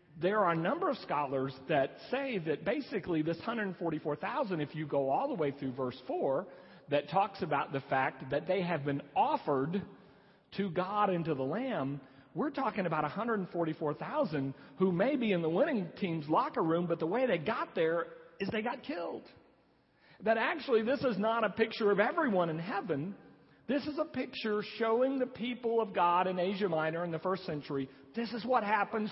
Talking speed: 190 wpm